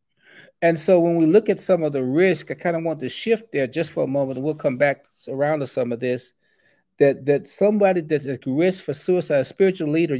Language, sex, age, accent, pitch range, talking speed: English, male, 40-59, American, 140-180 Hz, 235 wpm